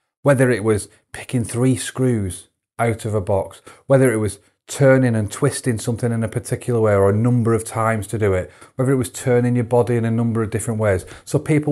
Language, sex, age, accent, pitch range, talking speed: English, male, 30-49, British, 105-130 Hz, 220 wpm